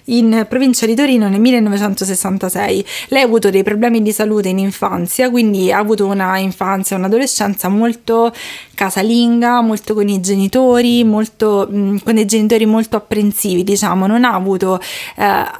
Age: 20-39